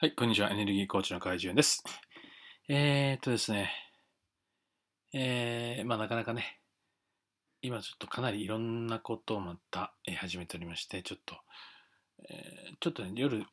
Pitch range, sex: 100-130 Hz, male